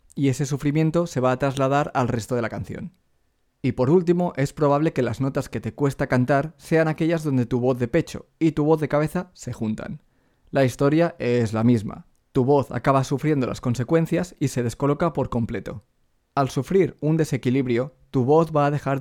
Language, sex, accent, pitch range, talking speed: Spanish, male, Spanish, 120-150 Hz, 200 wpm